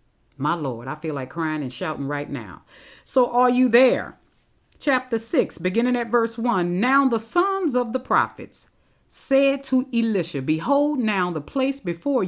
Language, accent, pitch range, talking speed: English, American, 165-245 Hz, 165 wpm